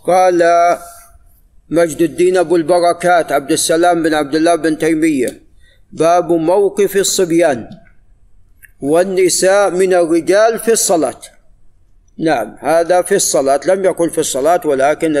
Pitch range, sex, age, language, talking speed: 140-180 Hz, male, 50-69, Arabic, 115 wpm